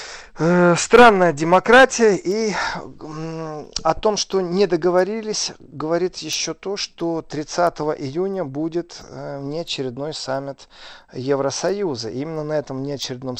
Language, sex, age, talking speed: Russian, male, 40-59, 100 wpm